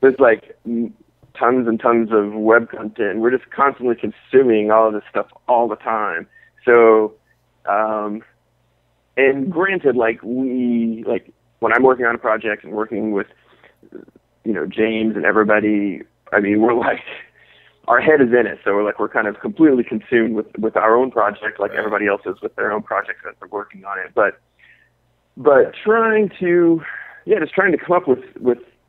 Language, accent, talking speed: English, American, 180 wpm